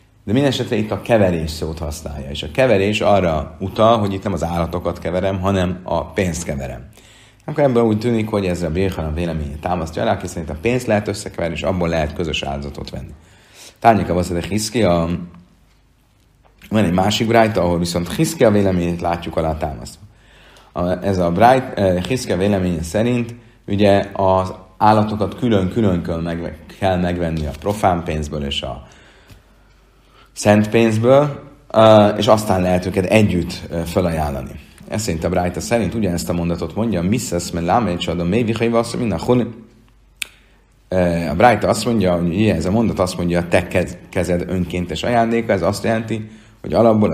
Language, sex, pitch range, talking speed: Hungarian, male, 85-110 Hz, 165 wpm